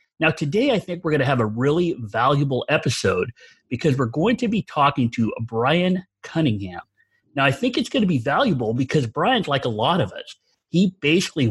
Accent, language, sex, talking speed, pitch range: American, English, male, 200 wpm, 120-160 Hz